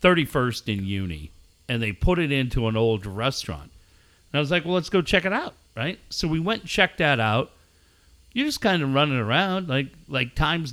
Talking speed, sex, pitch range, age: 215 wpm, male, 105-155 Hz, 50-69